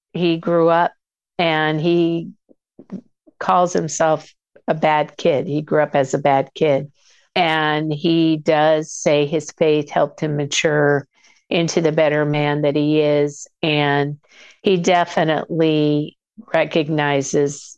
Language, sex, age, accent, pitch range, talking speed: English, female, 50-69, American, 145-170 Hz, 125 wpm